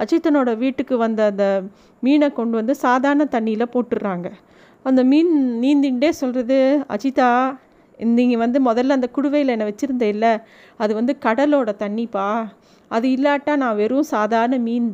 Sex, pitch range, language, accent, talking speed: female, 225-280 Hz, Tamil, native, 130 wpm